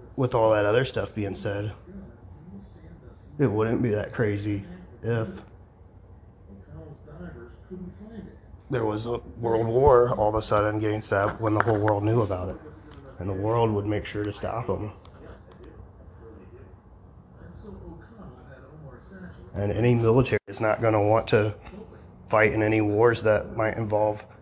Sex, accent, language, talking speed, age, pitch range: male, American, English, 140 wpm, 30-49, 95-110 Hz